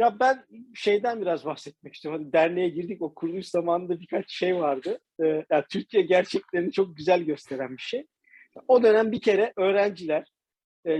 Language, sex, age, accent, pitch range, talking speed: Turkish, male, 50-69, native, 160-225 Hz, 170 wpm